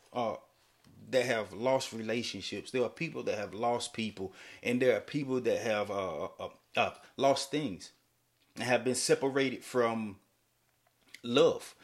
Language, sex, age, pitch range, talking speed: English, male, 30-49, 115-140 Hz, 145 wpm